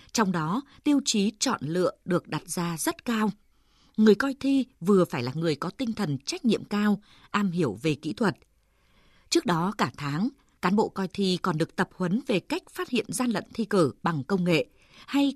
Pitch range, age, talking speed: 175-240 Hz, 20-39, 205 wpm